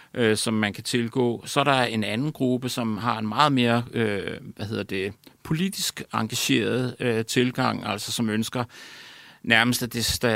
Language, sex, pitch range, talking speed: Danish, male, 105-120 Hz, 185 wpm